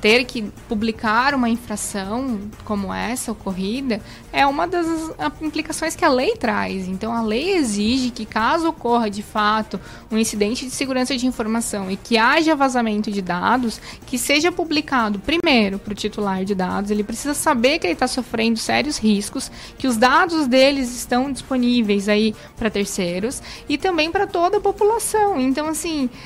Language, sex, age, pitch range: Portuguese, female, 20-39, 215-295 Hz